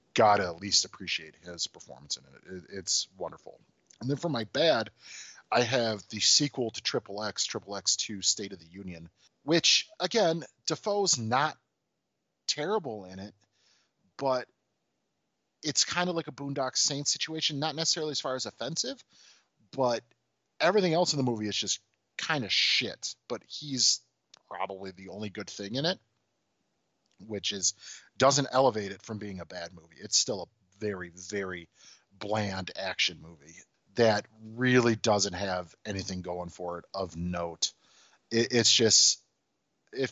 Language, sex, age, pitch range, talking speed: English, male, 30-49, 95-130 Hz, 150 wpm